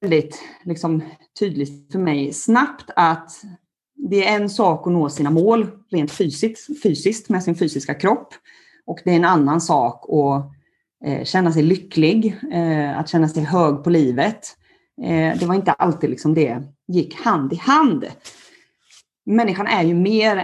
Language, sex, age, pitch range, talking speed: Swedish, female, 30-49, 150-205 Hz, 160 wpm